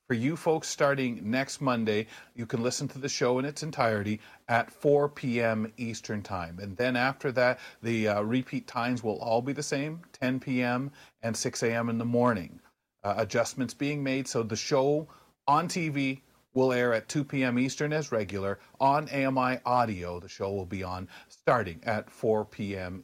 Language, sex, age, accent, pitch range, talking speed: English, male, 40-59, American, 110-140 Hz, 180 wpm